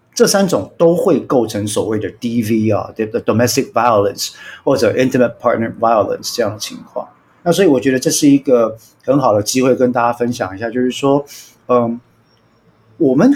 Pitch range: 110-160 Hz